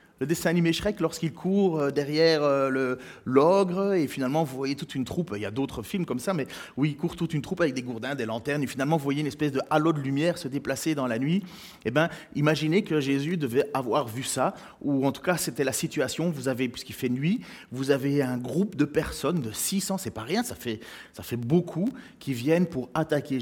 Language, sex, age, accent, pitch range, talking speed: French, male, 30-49, French, 130-185 Hz, 235 wpm